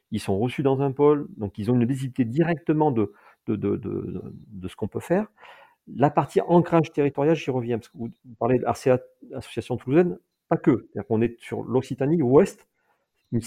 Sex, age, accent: male, 40-59, French